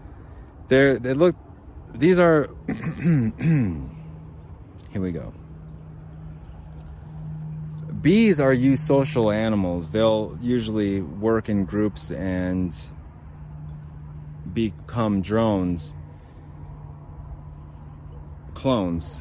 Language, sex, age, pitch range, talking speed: English, male, 30-49, 80-105 Hz, 70 wpm